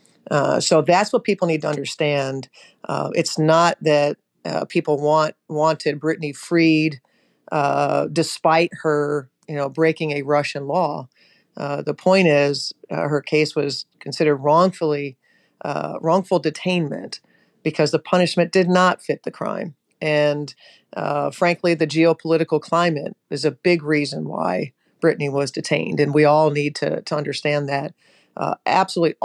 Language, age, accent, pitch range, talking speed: English, 50-69, American, 145-165 Hz, 150 wpm